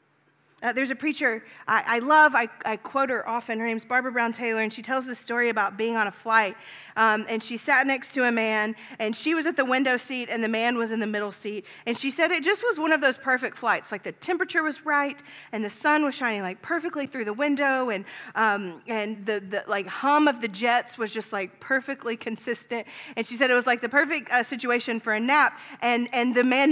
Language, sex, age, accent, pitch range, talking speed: English, female, 30-49, American, 230-295 Hz, 245 wpm